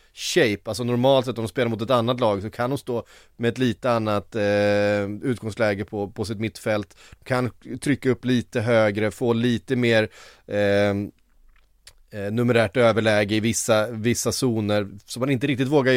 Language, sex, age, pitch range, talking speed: Swedish, male, 30-49, 100-125 Hz, 170 wpm